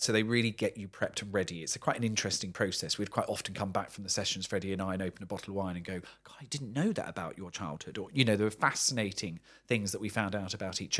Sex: male